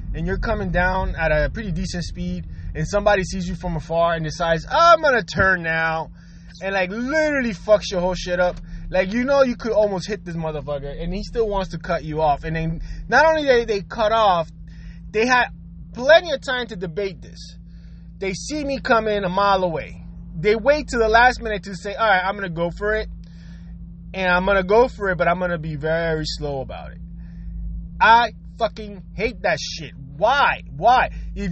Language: English